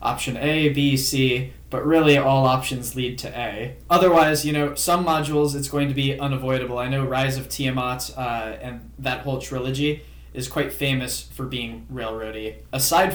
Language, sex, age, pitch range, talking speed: English, male, 10-29, 115-140 Hz, 175 wpm